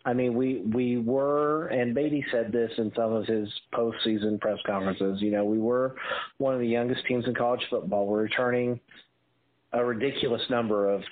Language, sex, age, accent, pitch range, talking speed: English, male, 40-59, American, 110-140 Hz, 185 wpm